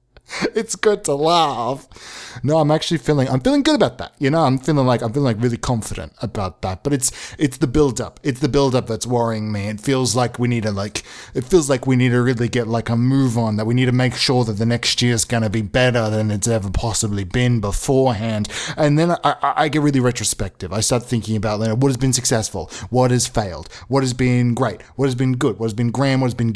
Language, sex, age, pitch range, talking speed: English, male, 20-39, 115-135 Hz, 255 wpm